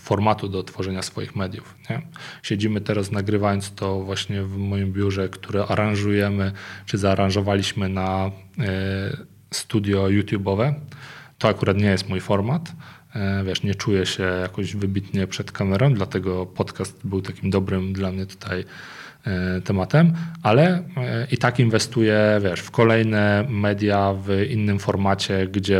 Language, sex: Polish, male